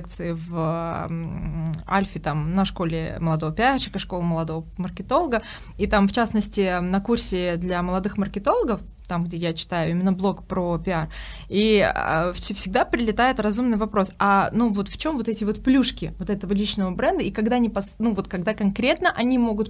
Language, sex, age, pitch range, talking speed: Russian, female, 20-39, 185-225 Hz, 155 wpm